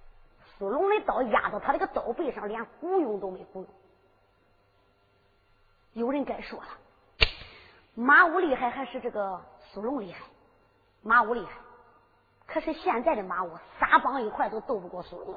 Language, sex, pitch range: Chinese, male, 205-330 Hz